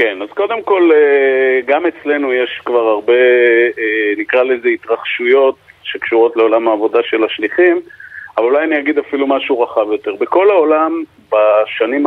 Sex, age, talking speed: male, 40-59, 140 wpm